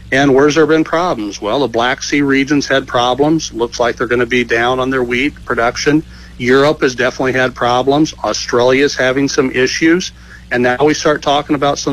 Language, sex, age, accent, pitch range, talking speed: English, male, 60-79, American, 125-150 Hz, 200 wpm